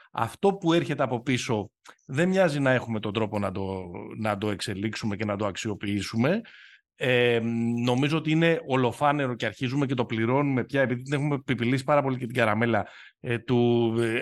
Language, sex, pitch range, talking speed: Greek, male, 105-140 Hz, 180 wpm